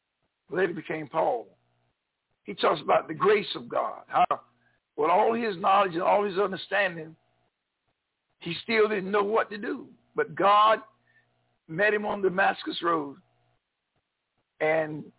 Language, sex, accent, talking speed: English, male, American, 140 wpm